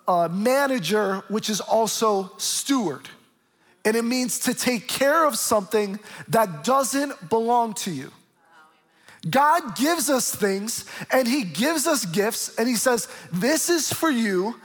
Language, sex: English, male